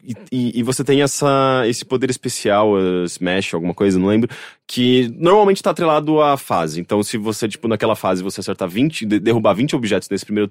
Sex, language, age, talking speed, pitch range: male, English, 20-39, 190 wpm, 100-140 Hz